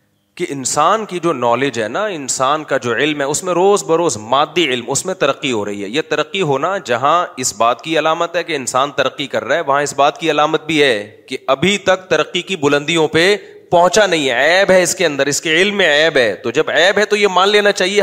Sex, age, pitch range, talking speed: male, 30-49, 145-205 Hz, 255 wpm